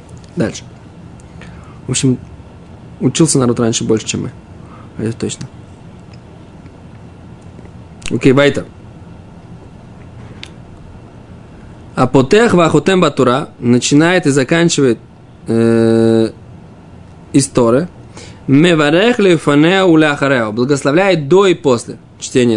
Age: 20-39